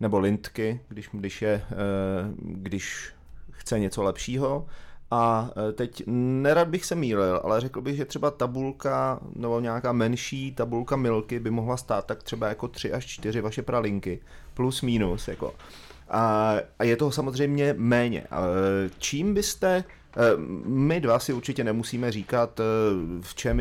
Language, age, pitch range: Czech, 30-49, 105-125 Hz